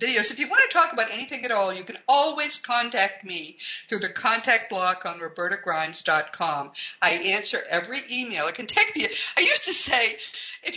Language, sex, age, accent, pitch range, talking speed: English, female, 50-69, American, 170-235 Hz, 190 wpm